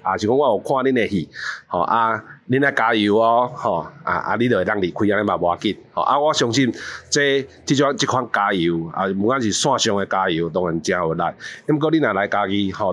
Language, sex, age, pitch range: Chinese, male, 30-49, 95-130 Hz